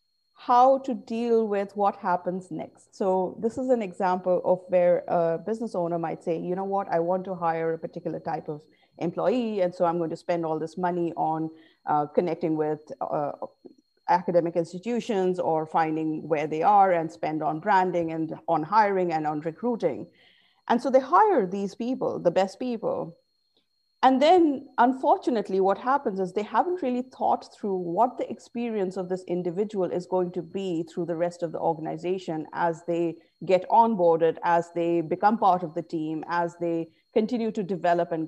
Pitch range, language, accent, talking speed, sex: 170-225 Hz, English, Indian, 180 wpm, female